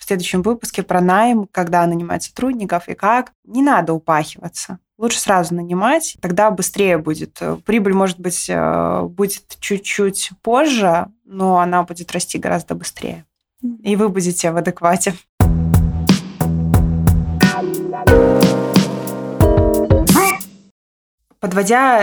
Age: 20-39